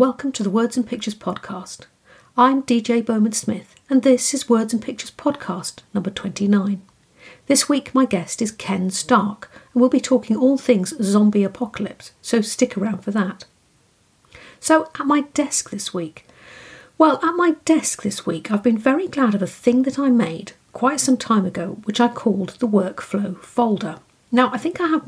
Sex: female